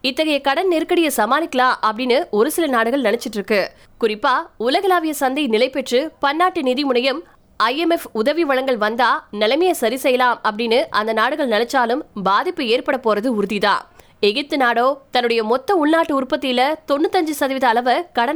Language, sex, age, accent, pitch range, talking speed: Tamil, female, 20-39, native, 240-300 Hz, 40 wpm